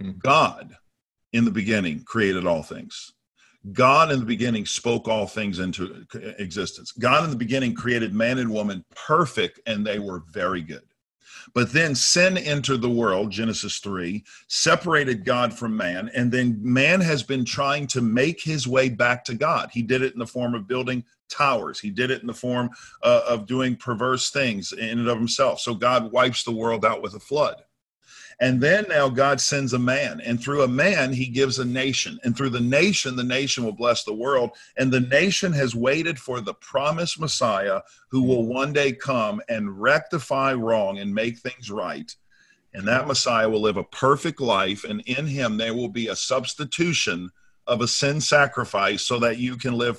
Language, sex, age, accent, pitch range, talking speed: English, male, 50-69, American, 115-135 Hz, 190 wpm